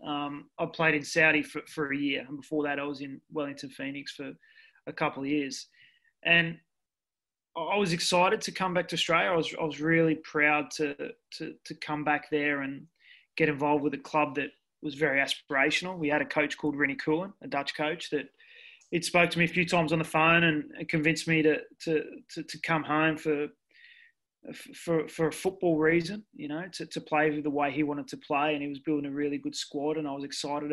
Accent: Australian